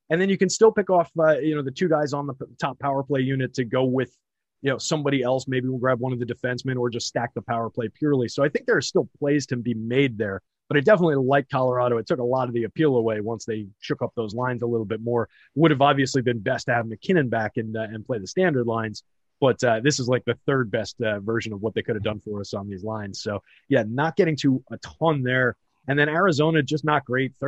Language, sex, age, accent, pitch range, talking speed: English, male, 30-49, American, 115-140 Hz, 275 wpm